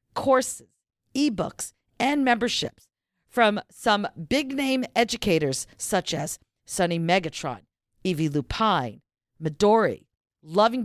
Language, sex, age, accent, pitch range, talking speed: English, female, 50-69, American, 175-250 Hz, 95 wpm